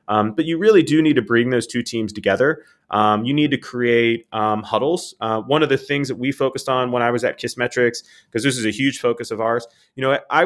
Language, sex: English, male